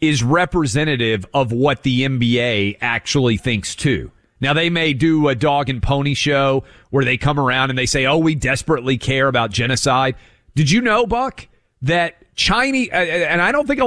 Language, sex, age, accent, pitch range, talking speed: English, male, 40-59, American, 110-155 Hz, 180 wpm